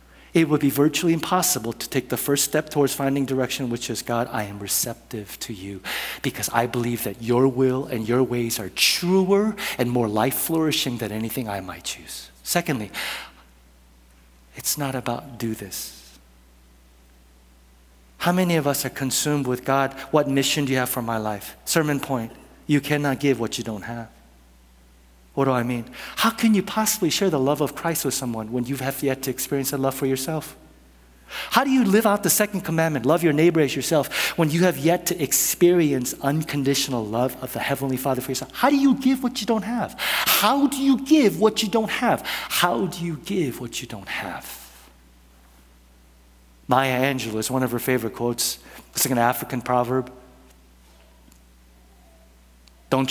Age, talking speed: 50-69, 180 wpm